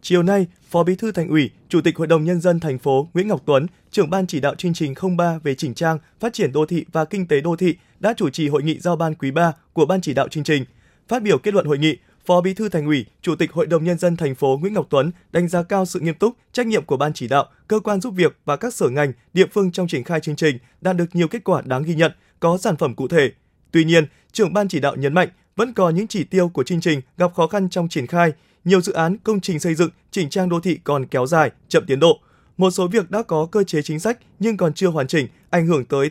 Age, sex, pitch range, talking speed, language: 20-39, male, 155-190 Hz, 285 wpm, Vietnamese